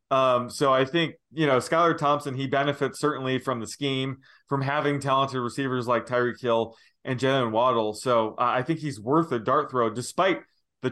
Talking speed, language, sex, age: 190 wpm, English, male, 20-39